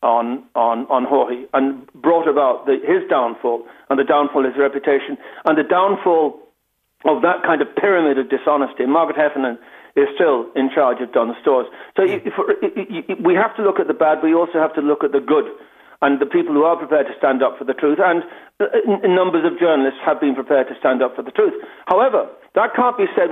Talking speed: 225 wpm